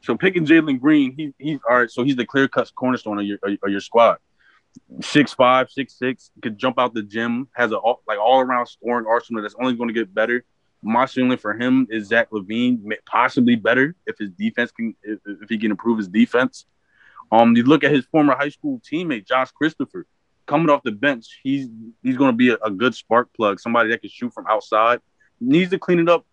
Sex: male